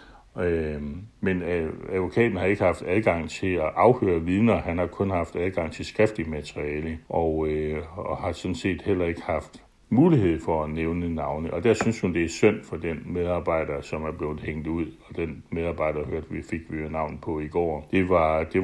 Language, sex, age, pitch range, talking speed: Danish, male, 60-79, 80-95 Hz, 195 wpm